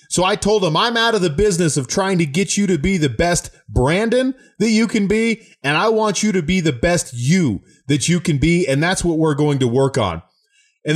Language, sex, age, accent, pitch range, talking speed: English, male, 30-49, American, 125-170 Hz, 245 wpm